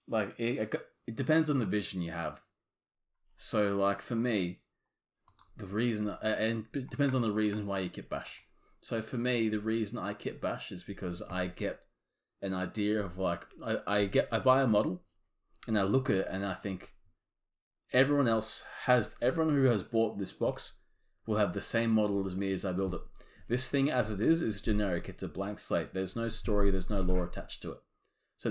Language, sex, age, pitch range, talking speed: English, male, 20-39, 95-115 Hz, 205 wpm